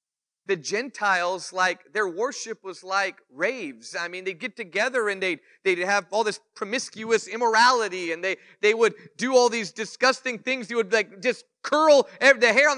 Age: 40-59